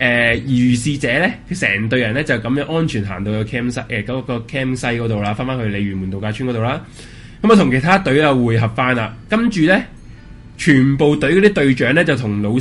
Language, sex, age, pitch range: Chinese, male, 20-39, 115-155 Hz